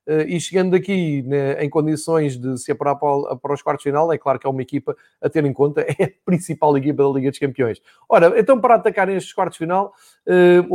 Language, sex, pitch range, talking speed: Portuguese, male, 145-185 Hz, 205 wpm